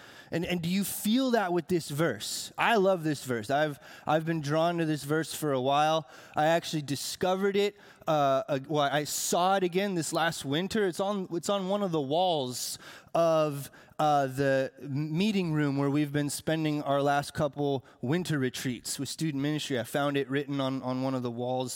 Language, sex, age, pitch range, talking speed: English, male, 20-39, 150-200 Hz, 200 wpm